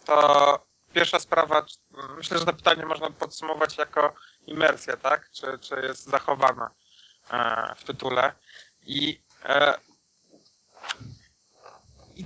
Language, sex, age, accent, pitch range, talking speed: Polish, male, 30-49, native, 150-175 Hz, 105 wpm